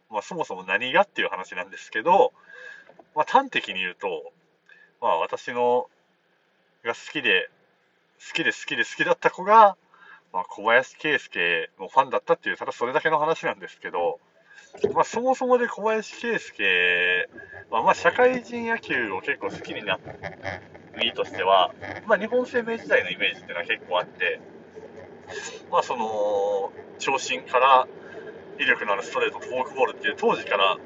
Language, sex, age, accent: Japanese, male, 30-49, native